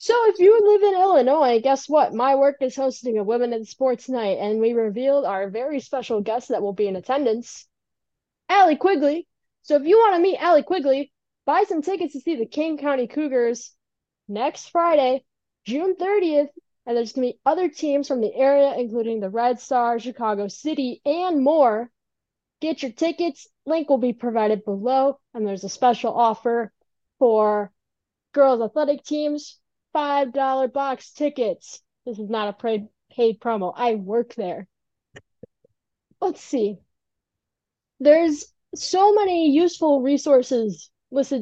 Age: 20-39